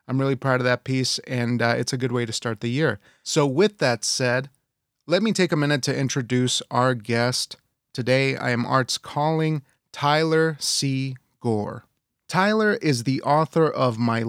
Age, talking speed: 30-49, 180 wpm